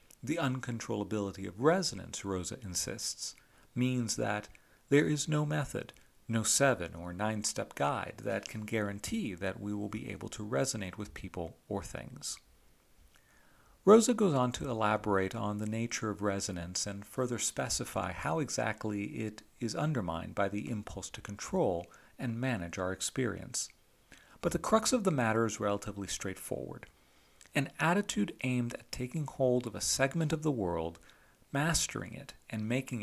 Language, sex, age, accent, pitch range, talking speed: English, male, 40-59, American, 100-130 Hz, 150 wpm